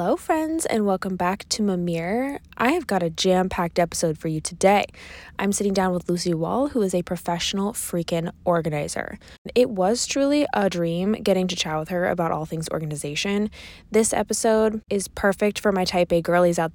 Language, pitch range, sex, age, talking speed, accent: English, 170-220 Hz, female, 20-39, 185 wpm, American